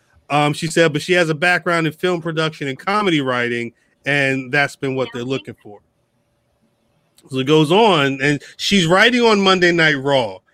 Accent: American